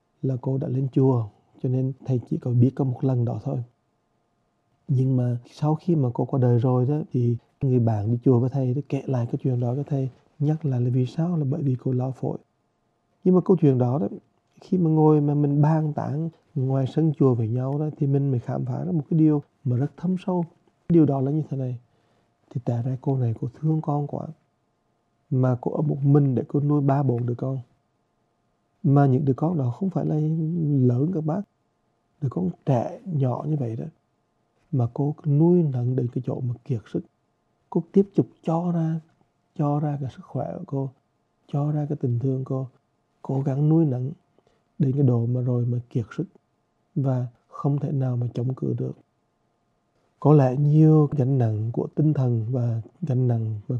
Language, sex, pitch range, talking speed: English, male, 125-150 Hz, 215 wpm